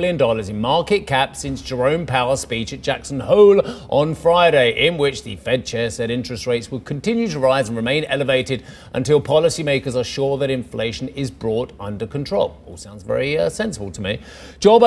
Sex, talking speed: male, 180 wpm